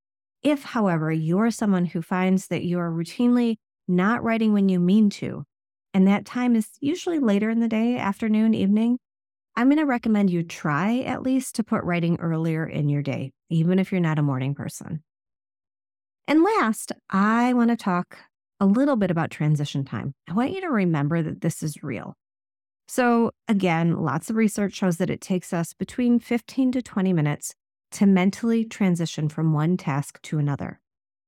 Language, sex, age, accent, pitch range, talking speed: English, female, 30-49, American, 160-220 Hz, 180 wpm